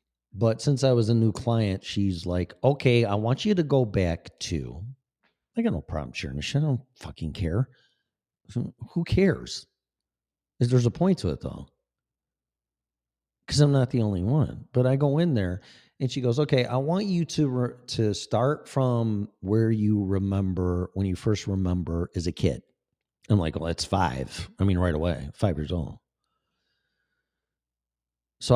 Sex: male